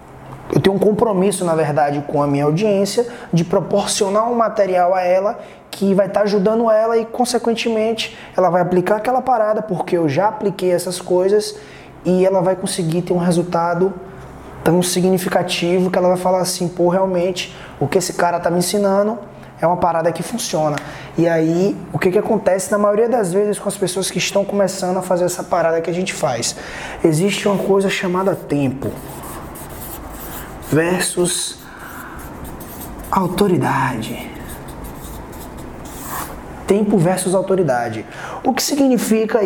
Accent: Brazilian